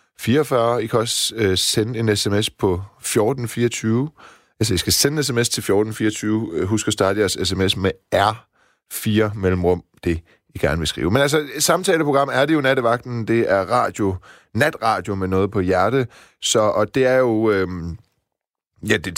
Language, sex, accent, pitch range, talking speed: Danish, male, native, 95-120 Hz, 175 wpm